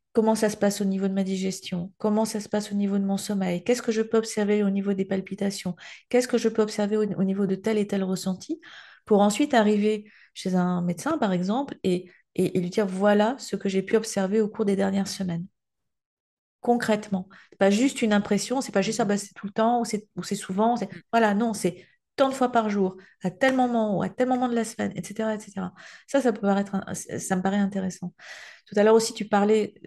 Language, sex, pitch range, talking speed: French, female, 185-225 Hz, 240 wpm